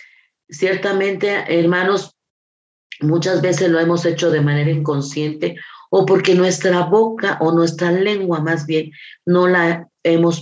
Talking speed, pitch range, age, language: 125 wpm, 150-190 Hz, 40-59, Spanish